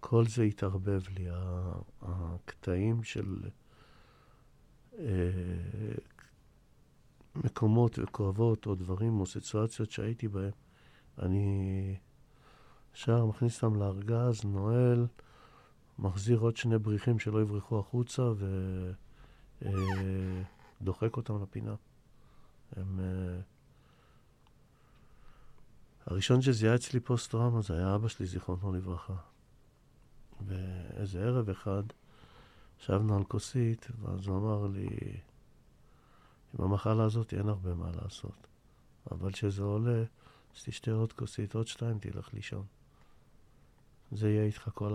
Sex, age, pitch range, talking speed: male, 50-69, 95-115 Hz, 100 wpm